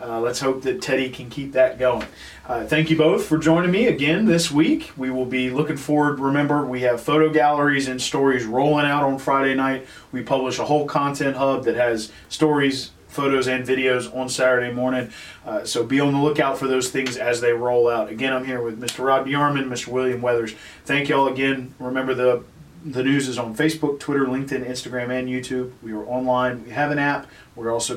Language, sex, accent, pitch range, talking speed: English, male, American, 115-145 Hz, 210 wpm